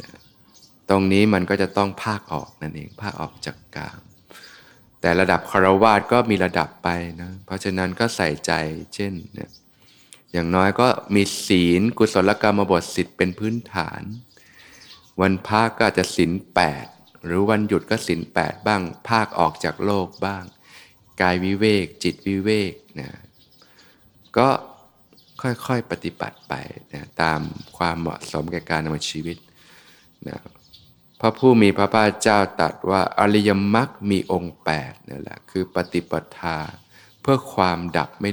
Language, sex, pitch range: Thai, male, 85-105 Hz